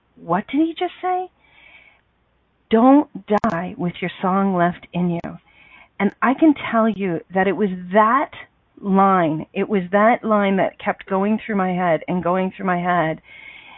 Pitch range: 175-215 Hz